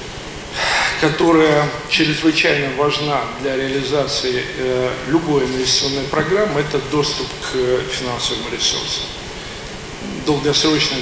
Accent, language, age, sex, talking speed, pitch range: native, Russian, 50-69, male, 80 wpm, 130-150 Hz